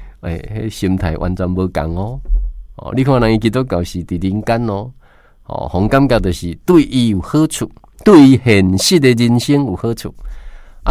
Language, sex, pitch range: Chinese, male, 90-130 Hz